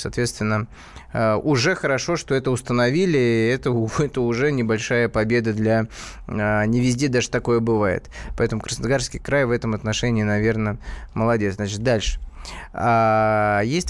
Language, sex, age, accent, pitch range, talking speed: Russian, male, 20-39, native, 115-140 Hz, 125 wpm